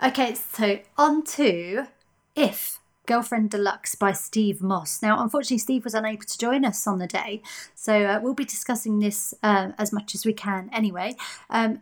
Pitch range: 205-250 Hz